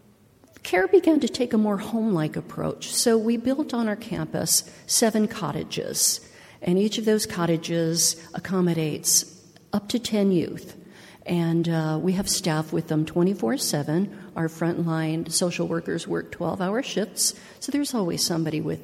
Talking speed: 145 wpm